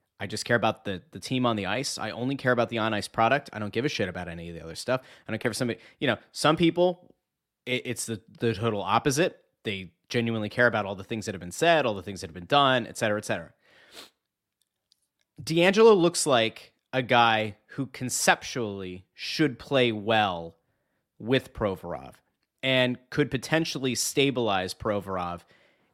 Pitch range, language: 110-150 Hz, English